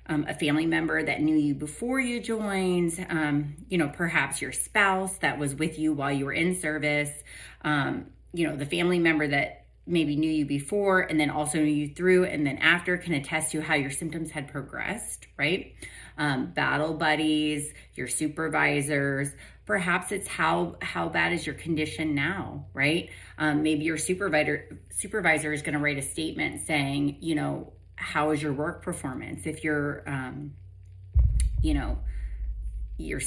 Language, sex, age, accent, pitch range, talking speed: English, female, 30-49, American, 140-165 Hz, 170 wpm